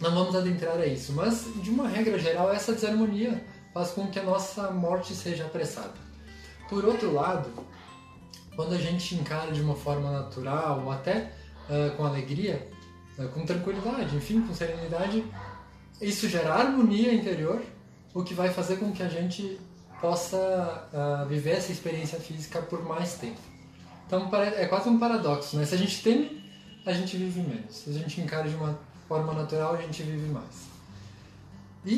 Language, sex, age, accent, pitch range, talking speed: Portuguese, male, 20-39, Brazilian, 145-190 Hz, 170 wpm